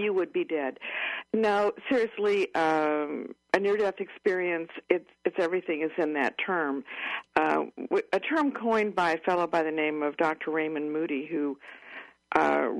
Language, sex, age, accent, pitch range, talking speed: English, female, 60-79, American, 150-185 Hz, 155 wpm